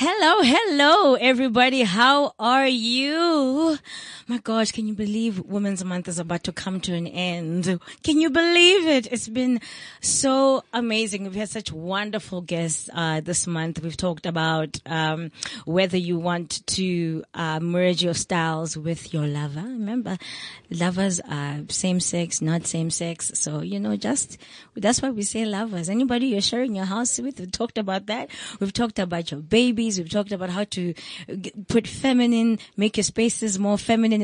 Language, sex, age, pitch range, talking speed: English, female, 20-39, 175-215 Hz, 165 wpm